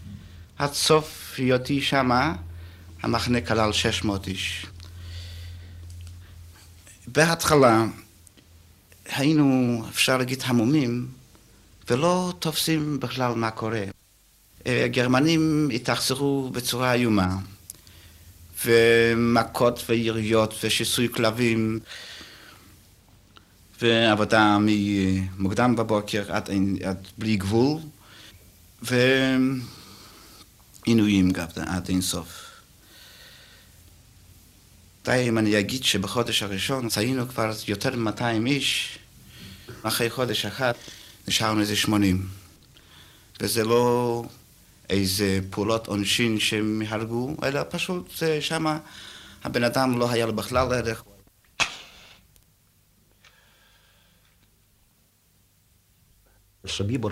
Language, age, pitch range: Hebrew, 60-79, 95-120 Hz